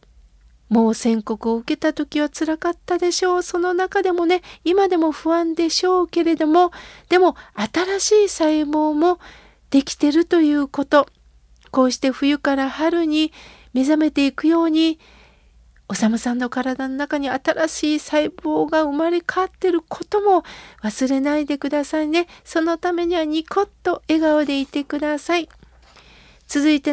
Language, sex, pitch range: Japanese, female, 260-340 Hz